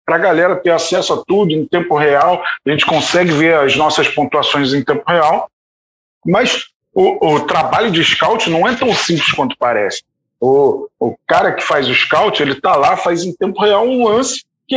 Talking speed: 200 wpm